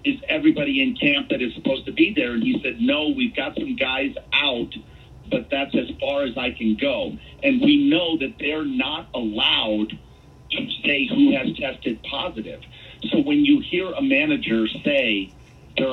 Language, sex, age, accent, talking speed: English, male, 50-69, American, 180 wpm